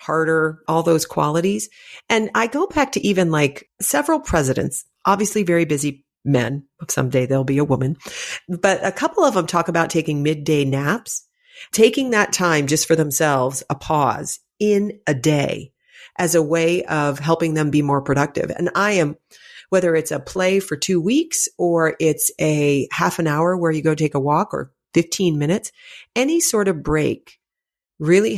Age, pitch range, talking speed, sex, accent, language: 40-59, 150-200 Hz, 175 wpm, female, American, English